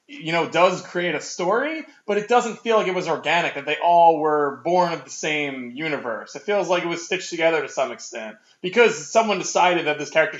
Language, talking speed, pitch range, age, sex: English, 225 wpm, 150-200 Hz, 20-39, male